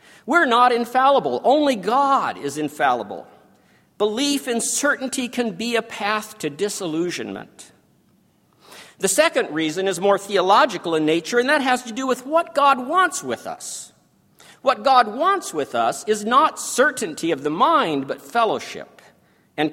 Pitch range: 205-270 Hz